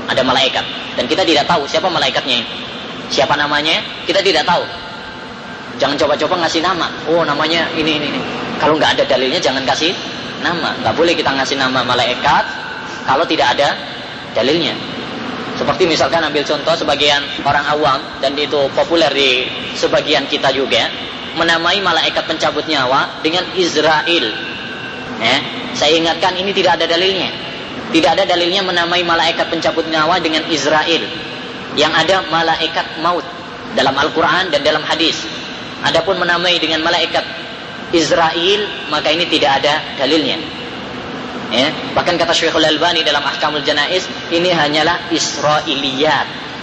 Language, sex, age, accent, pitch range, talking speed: Indonesian, female, 20-39, native, 150-175 Hz, 135 wpm